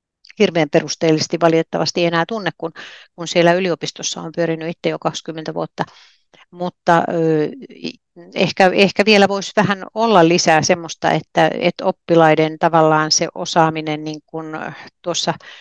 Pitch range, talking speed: 160-180 Hz, 125 wpm